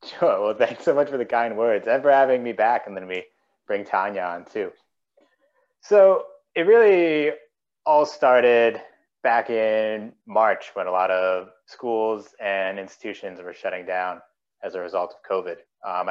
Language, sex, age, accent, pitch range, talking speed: English, male, 30-49, American, 105-135 Hz, 170 wpm